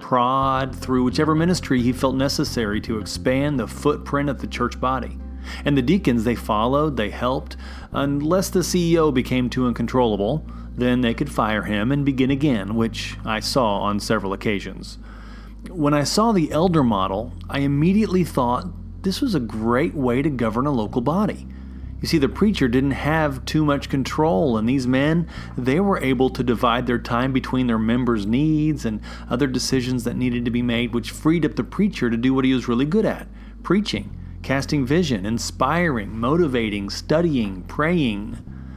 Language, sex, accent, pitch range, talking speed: English, male, American, 110-145 Hz, 175 wpm